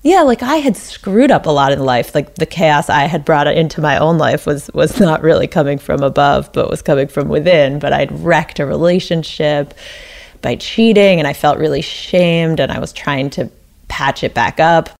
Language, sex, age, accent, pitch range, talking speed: English, female, 30-49, American, 145-180 Hz, 210 wpm